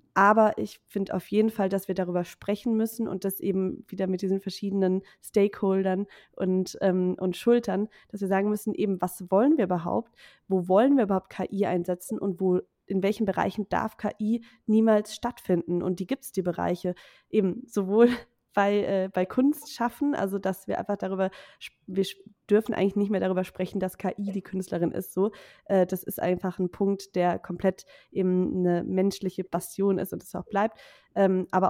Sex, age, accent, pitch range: female, 20-39, German, 180-205 Hz